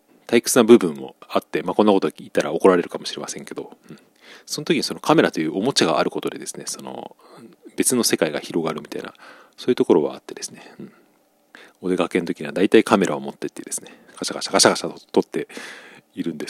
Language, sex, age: Japanese, male, 40-59